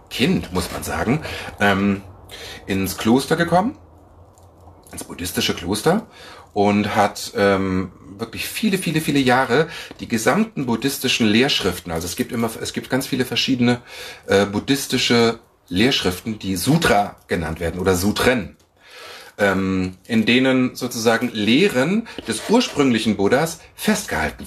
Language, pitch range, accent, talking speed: German, 95-130 Hz, German, 115 wpm